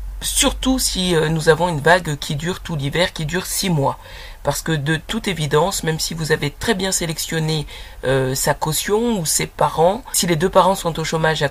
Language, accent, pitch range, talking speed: French, French, 150-190 Hz, 215 wpm